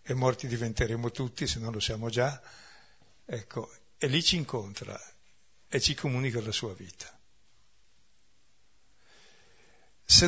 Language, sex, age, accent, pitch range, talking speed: Italian, male, 60-79, native, 110-140 Hz, 125 wpm